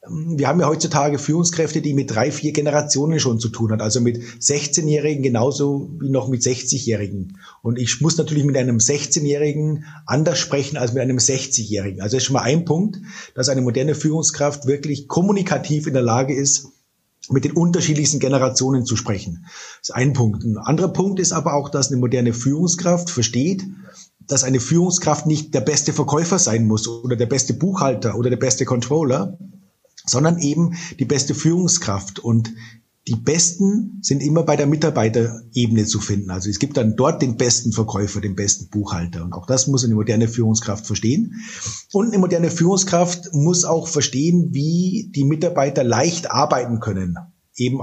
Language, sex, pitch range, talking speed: German, male, 120-160 Hz, 175 wpm